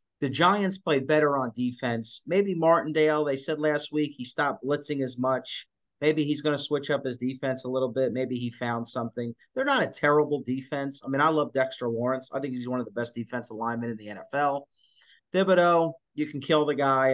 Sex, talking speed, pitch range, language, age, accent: male, 215 wpm, 120-150 Hz, English, 30-49, American